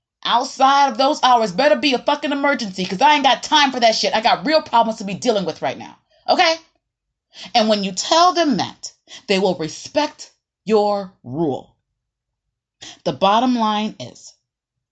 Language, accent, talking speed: English, American, 175 wpm